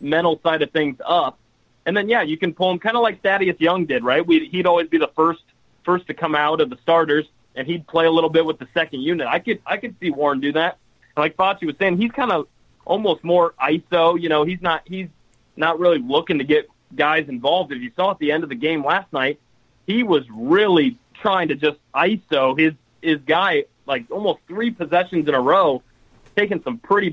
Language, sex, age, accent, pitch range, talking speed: English, male, 30-49, American, 145-185 Hz, 225 wpm